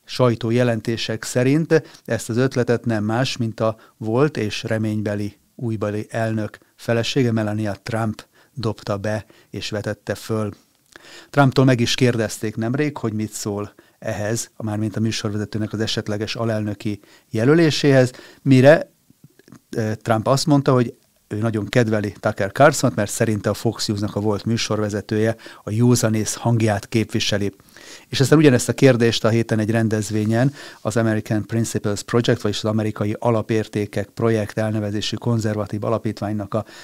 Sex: male